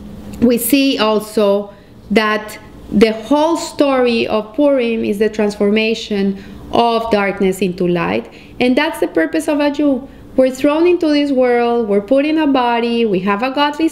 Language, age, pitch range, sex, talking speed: English, 30-49, 215-265 Hz, female, 160 wpm